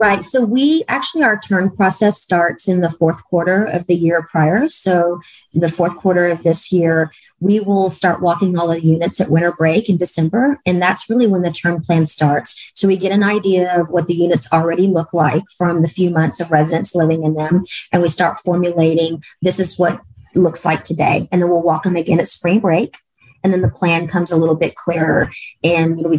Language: English